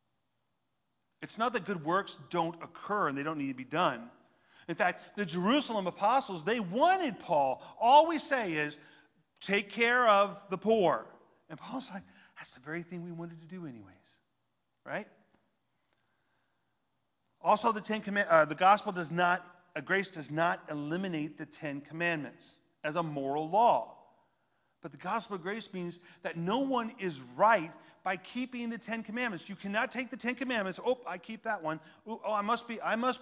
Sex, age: male, 40-59